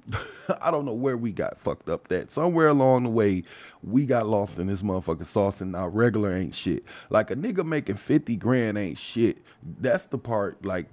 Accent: American